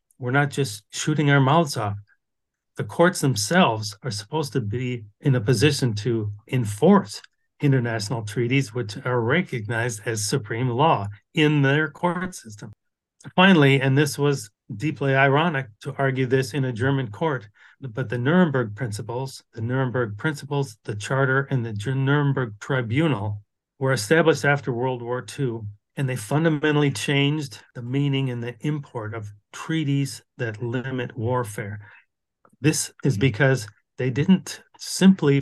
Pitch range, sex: 120-145 Hz, male